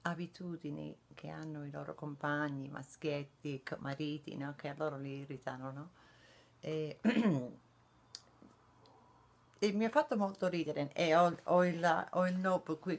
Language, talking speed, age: Italian, 135 wpm, 40-59